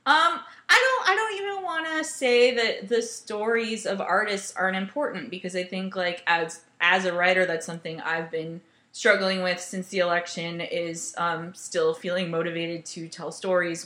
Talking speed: 180 wpm